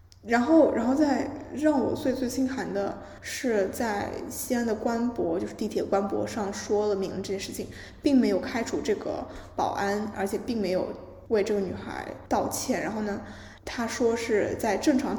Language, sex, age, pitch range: Chinese, female, 10-29, 205-270 Hz